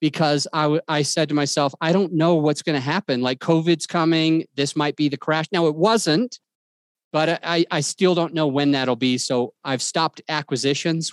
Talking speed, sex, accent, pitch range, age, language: 205 wpm, male, American, 140-175 Hz, 30-49, English